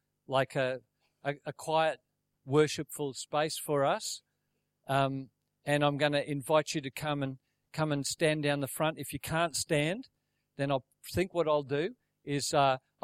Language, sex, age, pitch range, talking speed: English, male, 50-69, 135-150 Hz, 170 wpm